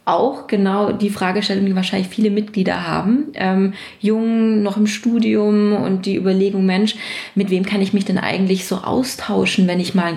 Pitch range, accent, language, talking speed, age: 185-210 Hz, German, German, 185 wpm, 20-39